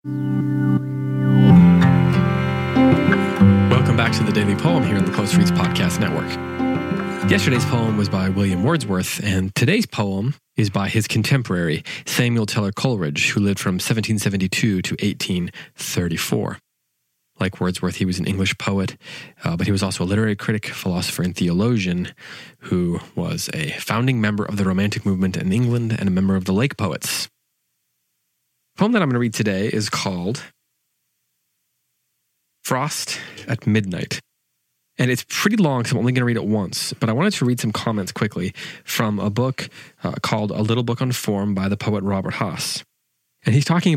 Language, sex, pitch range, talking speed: English, male, 95-120 Hz, 165 wpm